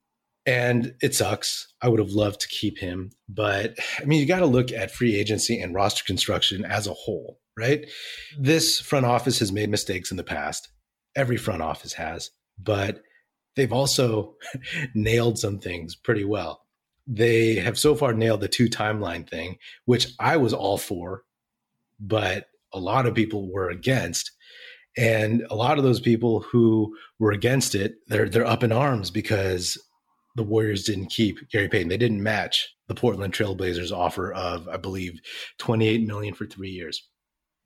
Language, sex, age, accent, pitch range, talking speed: English, male, 30-49, American, 100-120 Hz, 170 wpm